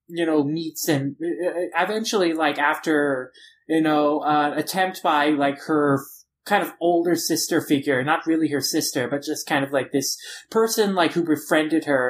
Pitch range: 140-170 Hz